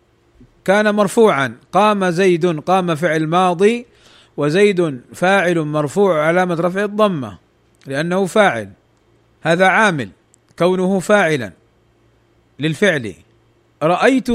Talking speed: 90 wpm